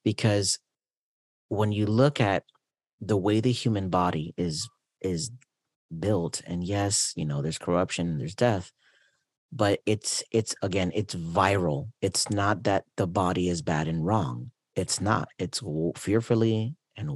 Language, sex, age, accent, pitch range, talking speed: English, male, 40-59, American, 85-110 Hz, 145 wpm